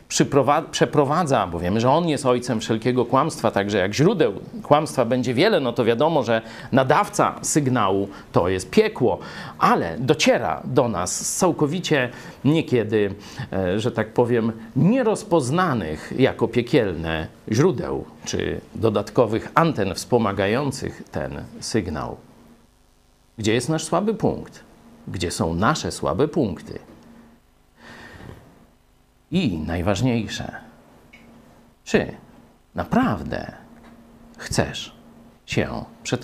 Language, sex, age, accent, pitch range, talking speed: Polish, male, 50-69, native, 105-150 Hz, 100 wpm